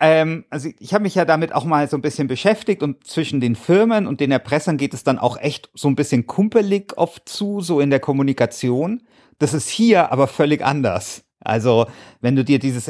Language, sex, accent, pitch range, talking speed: German, male, German, 115-160 Hz, 210 wpm